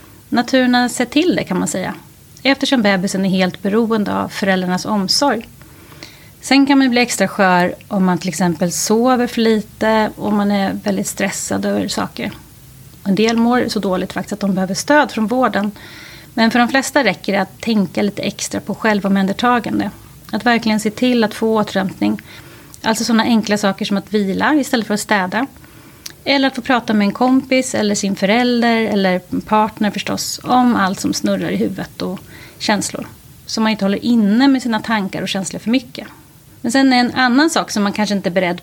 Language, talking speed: Swahili, 195 wpm